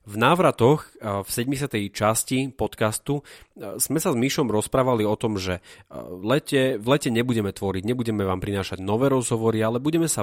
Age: 30-49